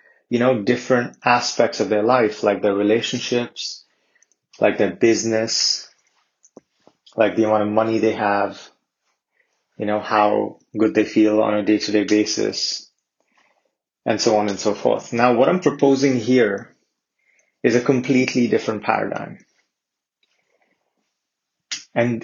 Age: 30-49